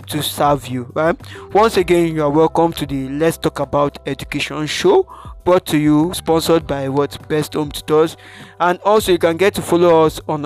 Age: 20-39